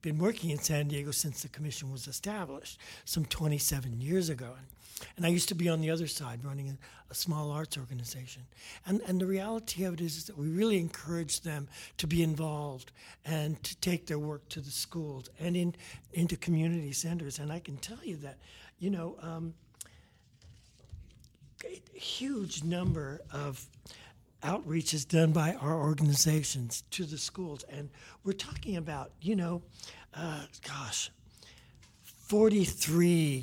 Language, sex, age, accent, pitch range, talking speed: English, male, 60-79, American, 135-165 Hz, 155 wpm